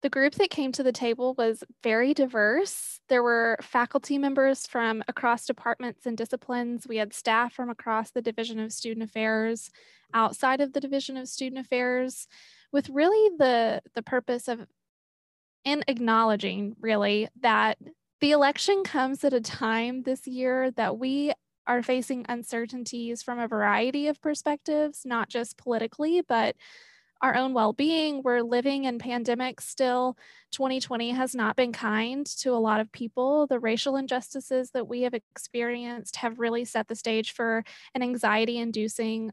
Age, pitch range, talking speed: 20-39, 225-265 Hz, 155 wpm